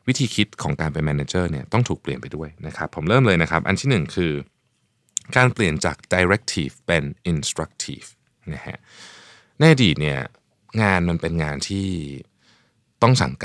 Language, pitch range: Thai, 80-105 Hz